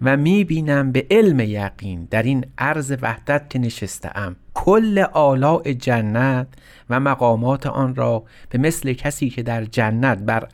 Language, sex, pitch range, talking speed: Persian, male, 110-135 Hz, 140 wpm